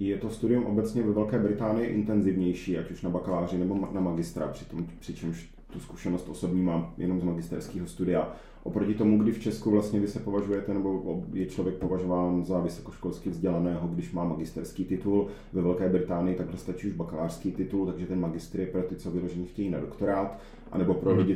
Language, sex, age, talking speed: Czech, male, 30-49, 190 wpm